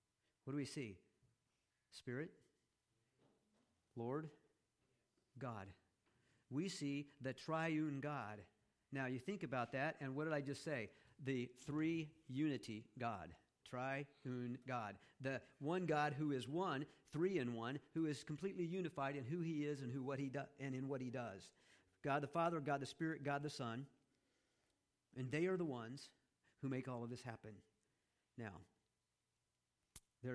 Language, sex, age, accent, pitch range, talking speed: English, male, 50-69, American, 120-145 Hz, 155 wpm